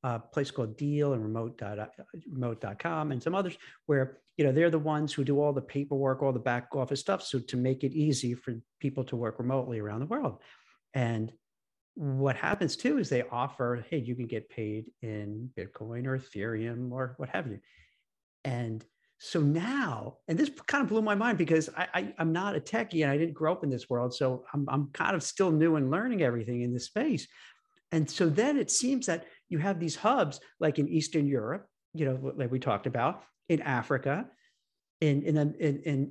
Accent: American